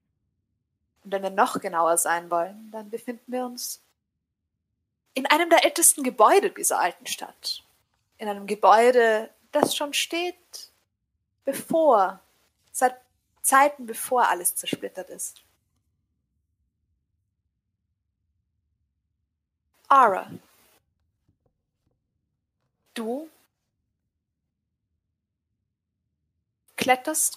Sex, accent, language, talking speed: female, German, German, 80 wpm